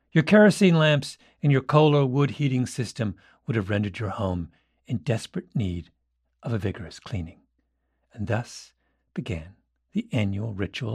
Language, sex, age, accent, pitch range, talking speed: English, male, 50-69, American, 110-175 Hz, 155 wpm